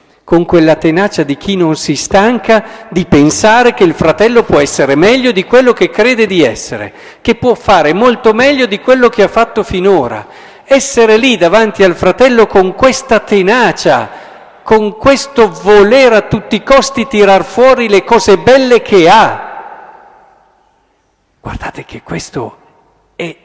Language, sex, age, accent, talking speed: Italian, male, 50-69, native, 150 wpm